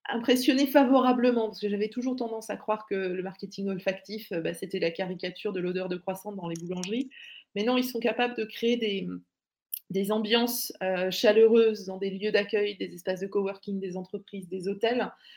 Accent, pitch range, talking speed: French, 195-240 Hz, 185 wpm